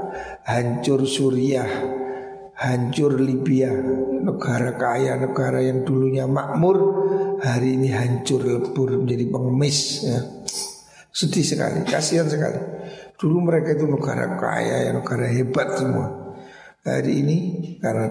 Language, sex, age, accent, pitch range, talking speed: Indonesian, male, 60-79, native, 130-165 Hz, 105 wpm